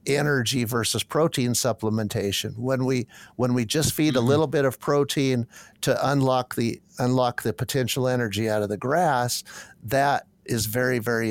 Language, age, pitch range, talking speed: English, 50-69, 115-135 Hz, 160 wpm